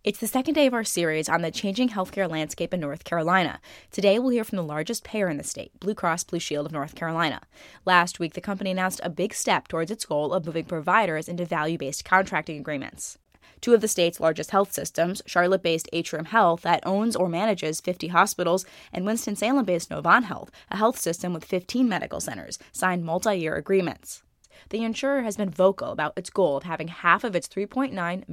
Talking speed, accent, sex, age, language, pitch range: 200 wpm, American, female, 10-29, English, 165-205 Hz